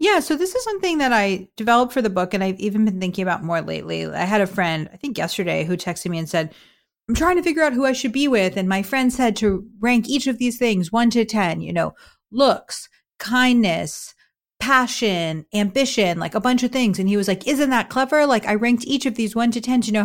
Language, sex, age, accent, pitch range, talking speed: English, female, 40-59, American, 190-255 Hz, 250 wpm